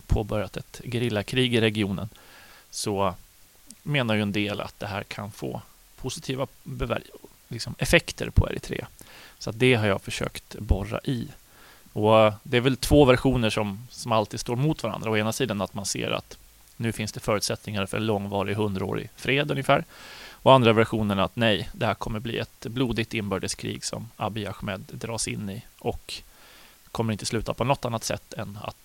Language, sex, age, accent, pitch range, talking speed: Swedish, male, 30-49, native, 105-125 Hz, 175 wpm